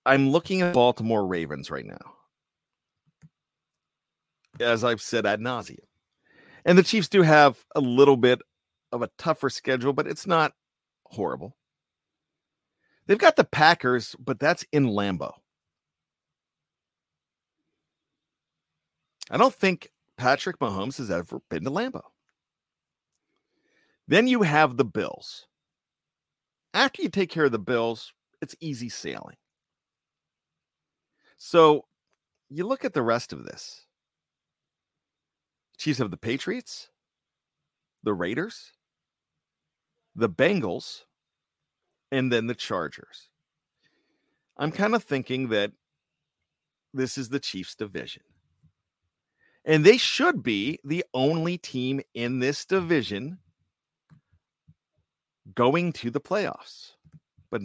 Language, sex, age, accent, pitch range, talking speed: English, male, 50-69, American, 115-175 Hz, 110 wpm